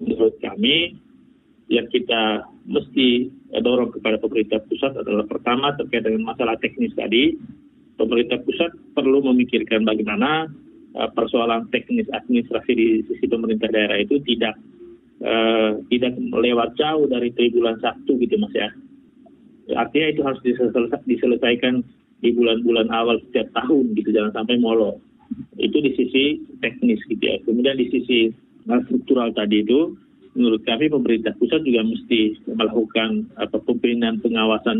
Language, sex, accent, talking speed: Indonesian, male, native, 135 wpm